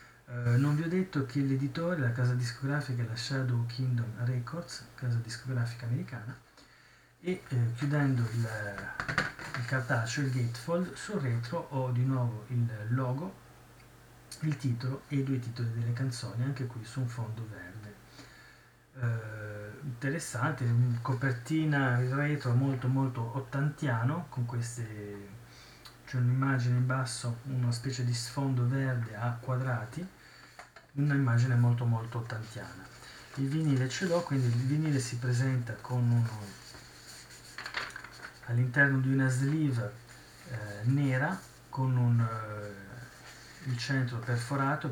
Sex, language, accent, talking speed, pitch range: male, Italian, native, 125 wpm, 120-135 Hz